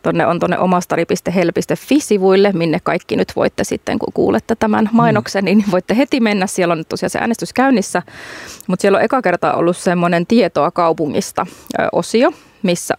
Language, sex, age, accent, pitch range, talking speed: Finnish, female, 30-49, native, 175-220 Hz, 155 wpm